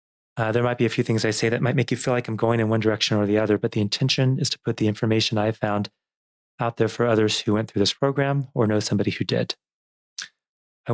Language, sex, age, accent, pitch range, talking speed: English, male, 30-49, American, 105-115 Hz, 270 wpm